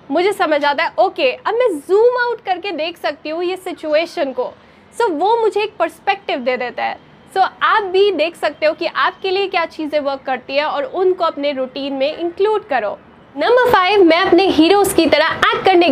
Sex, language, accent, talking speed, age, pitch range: female, Hindi, native, 210 wpm, 20-39, 290-390 Hz